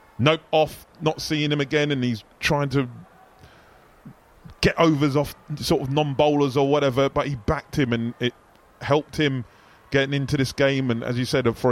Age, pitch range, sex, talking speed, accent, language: 20-39, 125-150 Hz, male, 180 wpm, British, English